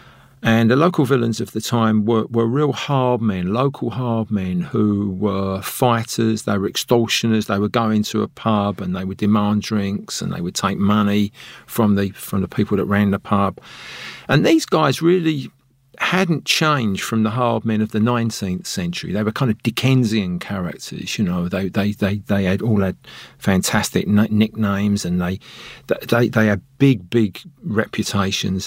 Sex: male